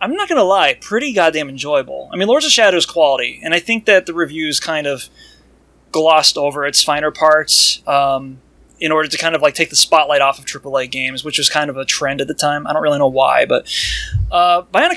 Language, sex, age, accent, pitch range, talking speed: English, male, 20-39, American, 145-190 Hz, 235 wpm